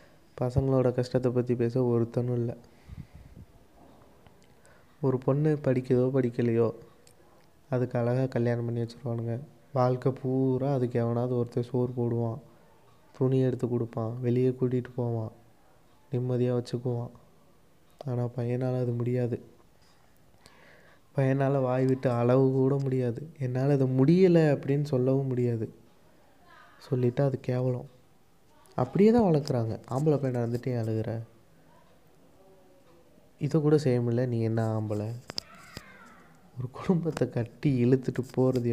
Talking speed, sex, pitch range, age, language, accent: 100 wpm, male, 120-130 Hz, 20-39, English, Indian